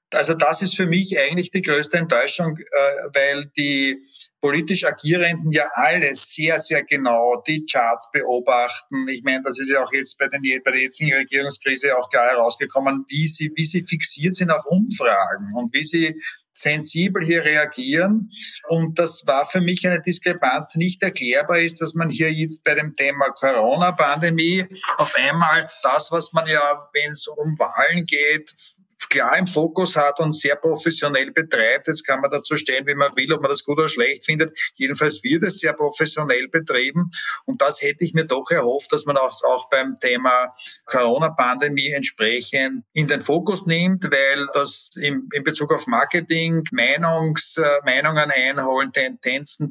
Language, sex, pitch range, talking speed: German, male, 140-170 Hz, 165 wpm